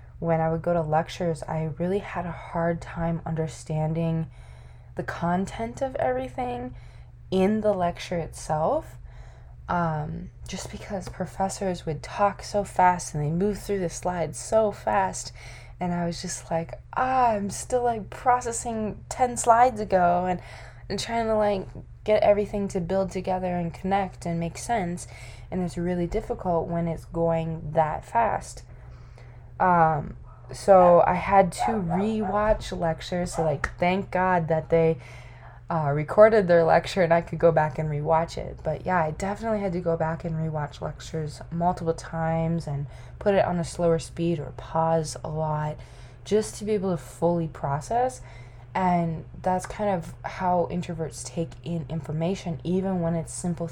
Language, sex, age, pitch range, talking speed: English, female, 20-39, 150-185 Hz, 160 wpm